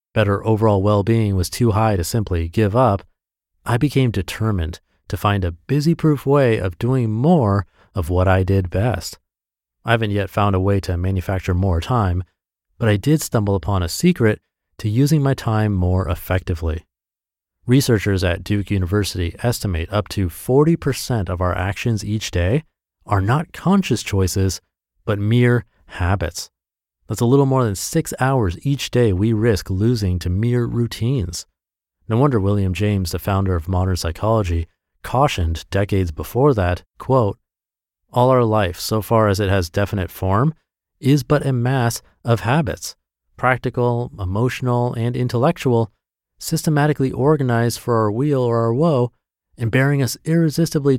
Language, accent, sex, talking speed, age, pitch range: English, American, male, 155 wpm, 30-49, 90-120 Hz